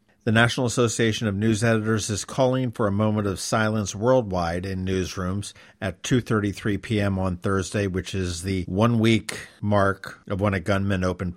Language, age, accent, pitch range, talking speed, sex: English, 50-69, American, 95-110 Hz, 165 wpm, male